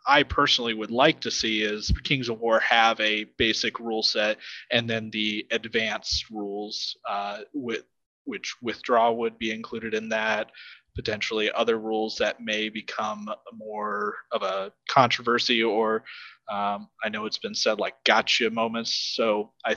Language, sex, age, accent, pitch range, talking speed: English, male, 30-49, American, 105-125 Hz, 155 wpm